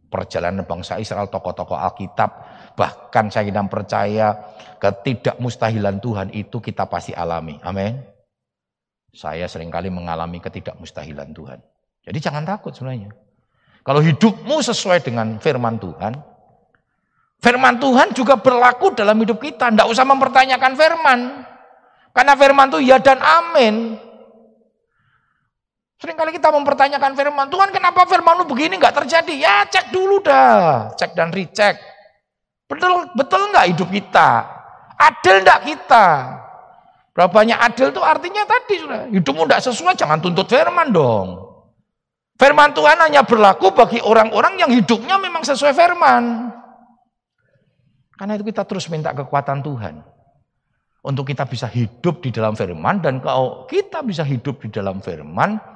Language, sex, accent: Indonesian, male, native